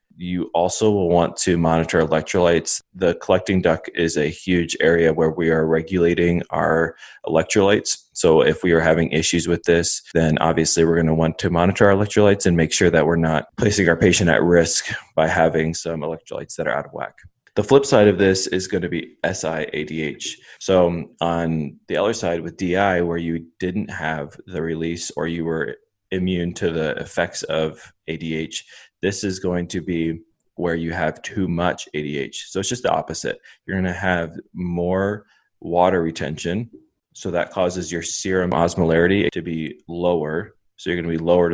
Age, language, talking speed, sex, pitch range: 20-39, English, 180 wpm, male, 80-90 Hz